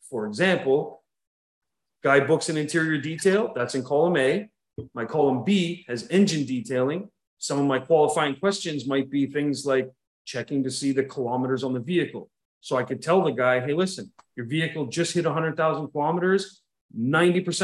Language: English